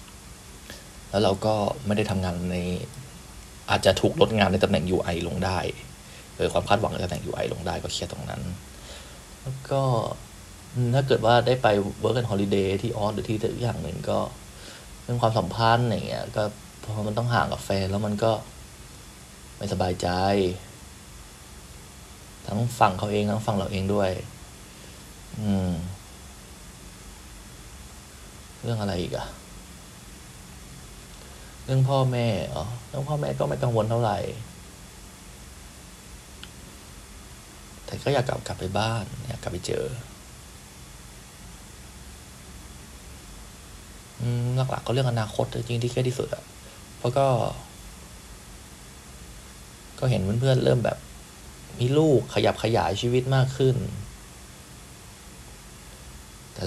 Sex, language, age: male, Thai, 20-39